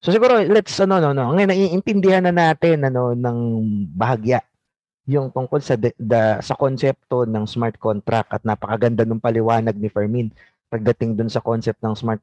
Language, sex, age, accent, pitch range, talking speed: Filipino, male, 20-39, native, 125-190 Hz, 170 wpm